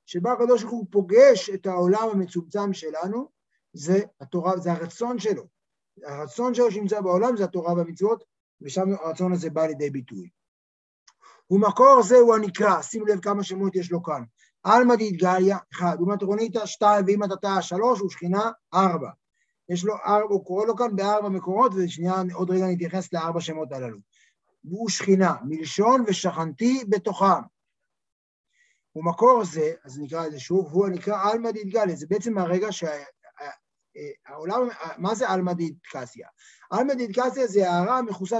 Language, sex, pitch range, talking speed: Hebrew, male, 175-225 Hz, 150 wpm